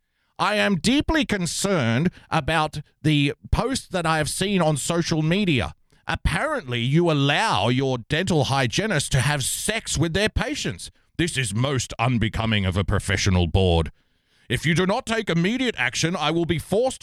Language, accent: English, Australian